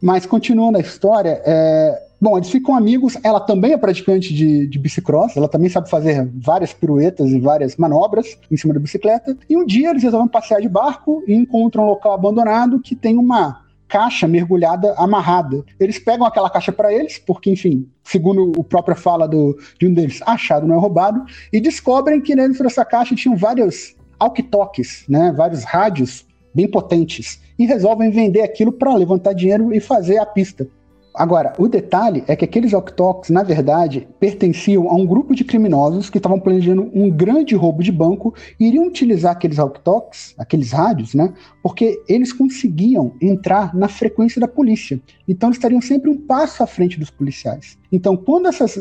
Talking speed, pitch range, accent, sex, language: 180 wpm, 160-230 Hz, Brazilian, male, Portuguese